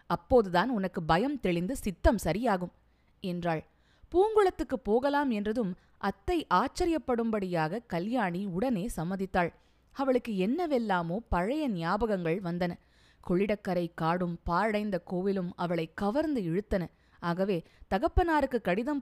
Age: 20-39